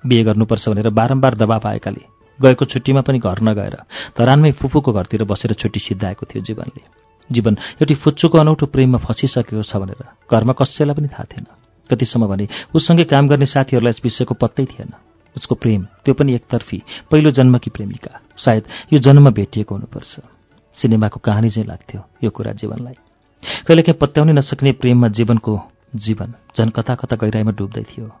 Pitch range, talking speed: 110-135 Hz, 115 wpm